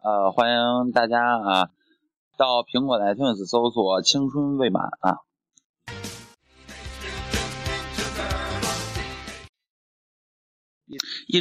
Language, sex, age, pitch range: Chinese, male, 20-39, 115-175 Hz